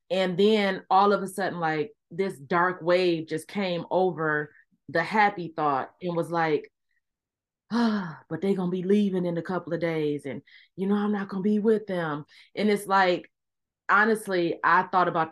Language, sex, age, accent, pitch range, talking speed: English, female, 20-39, American, 165-195 Hz, 190 wpm